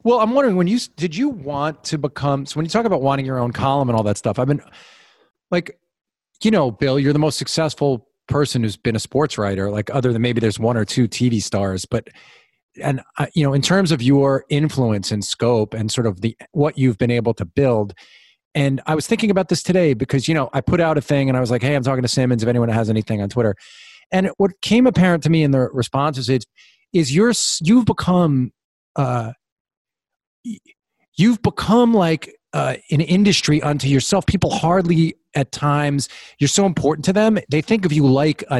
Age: 40-59